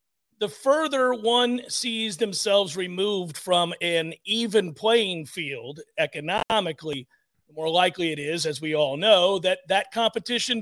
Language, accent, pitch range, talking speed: English, American, 180-235 Hz, 135 wpm